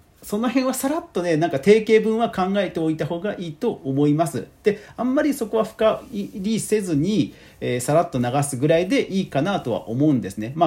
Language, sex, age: Japanese, male, 40-59